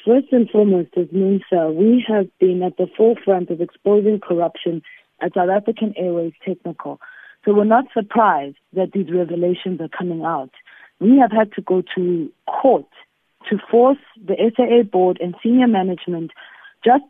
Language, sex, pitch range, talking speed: English, female, 185-235 Hz, 155 wpm